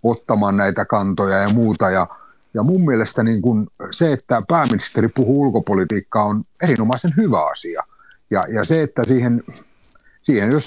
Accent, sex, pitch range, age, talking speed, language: native, male, 100-130 Hz, 30-49, 150 wpm, Finnish